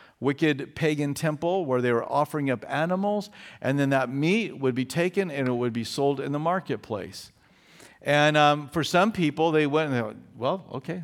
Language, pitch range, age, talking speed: English, 140-175 Hz, 50-69, 195 wpm